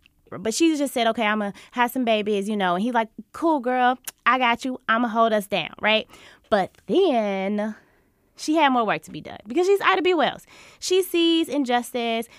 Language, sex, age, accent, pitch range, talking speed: English, female, 20-39, American, 190-260 Hz, 200 wpm